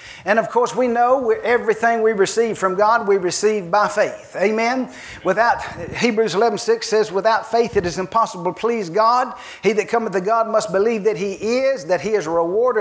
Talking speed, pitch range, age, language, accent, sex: 210 wpm, 200-260 Hz, 50-69, English, American, male